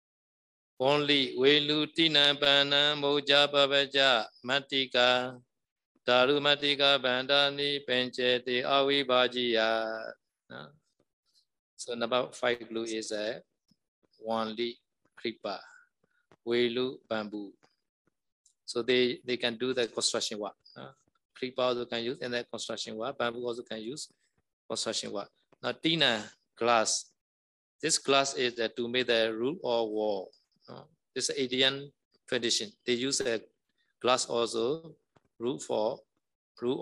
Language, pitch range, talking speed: Vietnamese, 120-140 Hz, 115 wpm